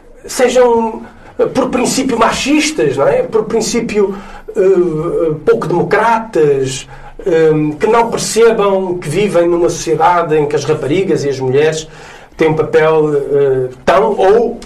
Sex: male